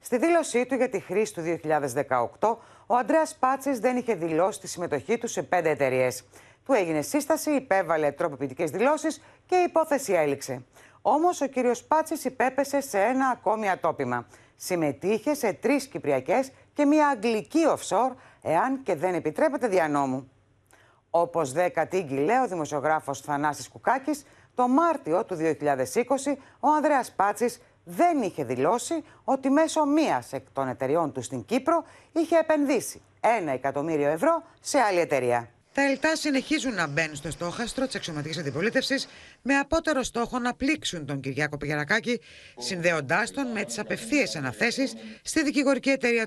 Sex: female